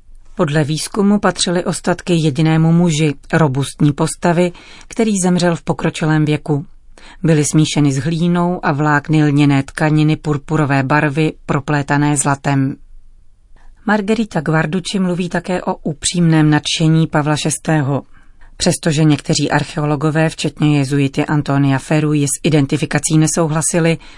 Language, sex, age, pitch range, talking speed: Czech, female, 30-49, 150-170 Hz, 110 wpm